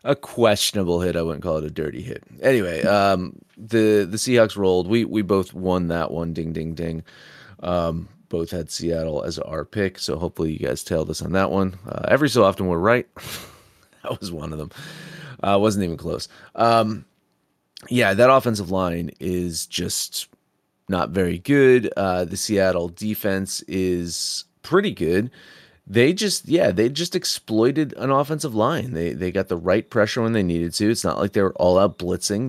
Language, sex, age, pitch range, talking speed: English, male, 30-49, 90-120 Hz, 185 wpm